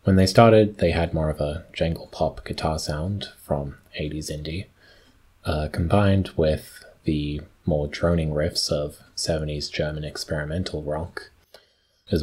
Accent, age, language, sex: American, 20-39, English, male